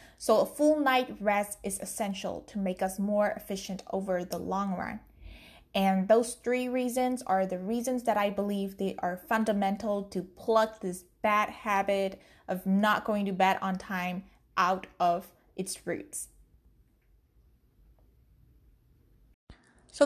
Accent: American